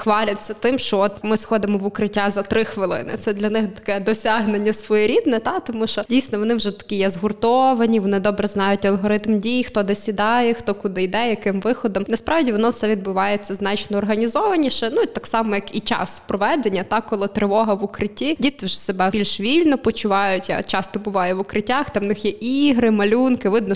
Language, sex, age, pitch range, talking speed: Ukrainian, female, 20-39, 200-230 Hz, 190 wpm